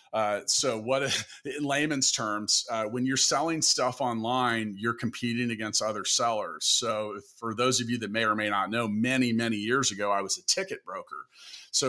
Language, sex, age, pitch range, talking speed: English, male, 40-59, 105-130 Hz, 190 wpm